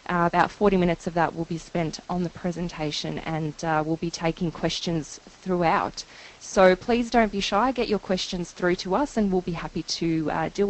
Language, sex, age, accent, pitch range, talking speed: English, female, 20-39, Australian, 170-220 Hz, 210 wpm